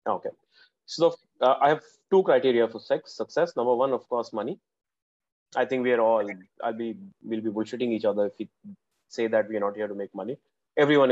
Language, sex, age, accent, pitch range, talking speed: English, male, 30-49, Indian, 110-135 Hz, 205 wpm